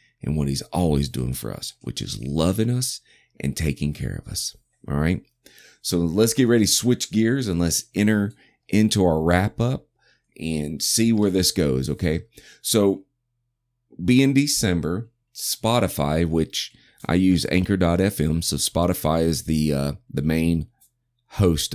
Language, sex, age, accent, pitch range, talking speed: English, male, 30-49, American, 80-115 Hz, 150 wpm